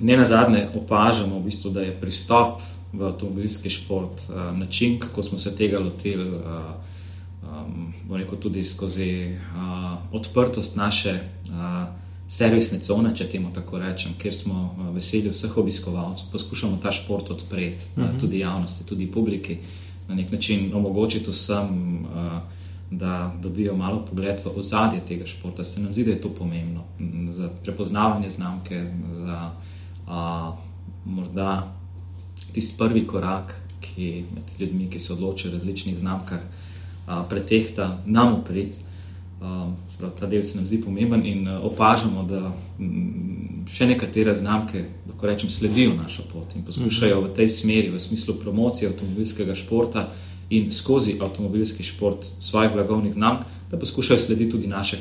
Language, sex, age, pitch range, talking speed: English, male, 20-39, 90-105 Hz, 130 wpm